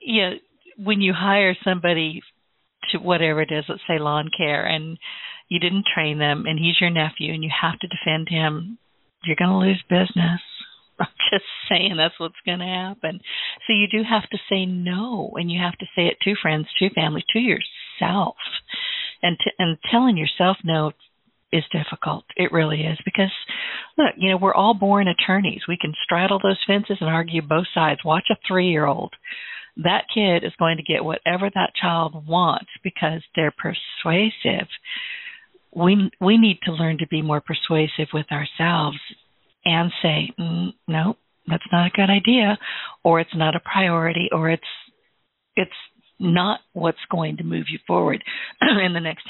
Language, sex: English, female